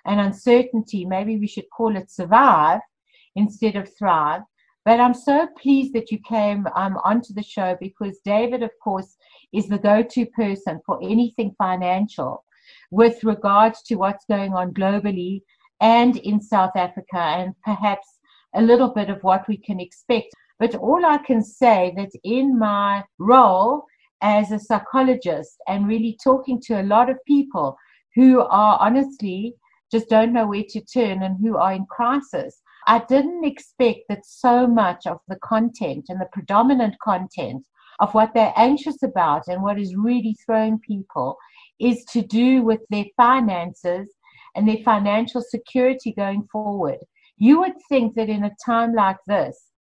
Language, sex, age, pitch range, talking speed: English, female, 60-79, 200-245 Hz, 160 wpm